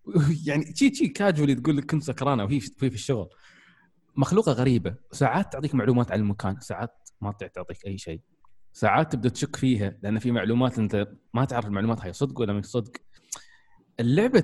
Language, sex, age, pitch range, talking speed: Arabic, male, 20-39, 105-140 Hz, 165 wpm